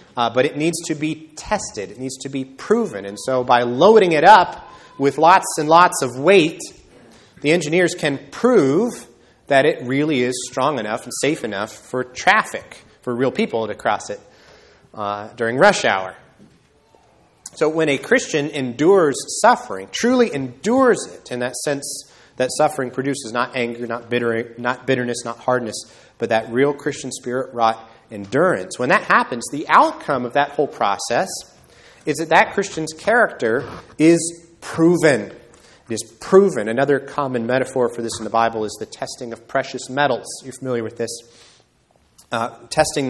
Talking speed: 160 wpm